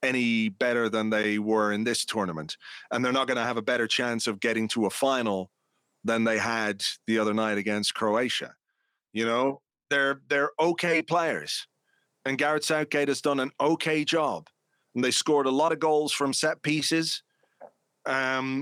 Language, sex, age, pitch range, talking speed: English, male, 40-59, 125-150 Hz, 175 wpm